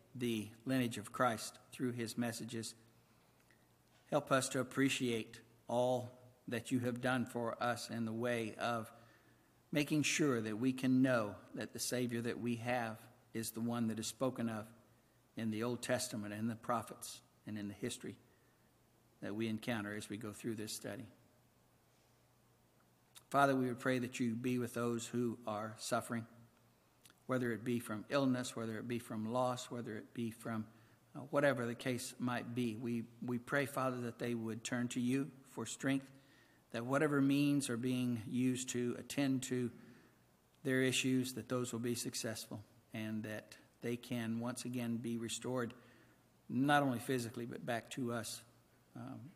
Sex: male